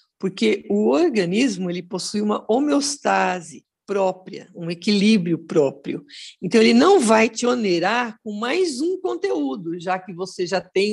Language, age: Portuguese, 50-69